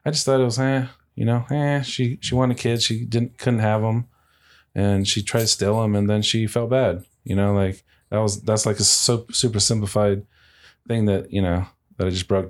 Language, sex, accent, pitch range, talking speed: English, male, American, 90-115 Hz, 225 wpm